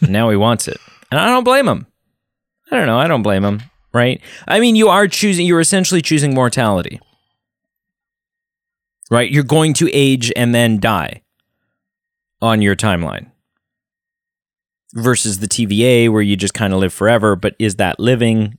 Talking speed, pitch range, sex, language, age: 165 wpm, 110-160 Hz, male, English, 30-49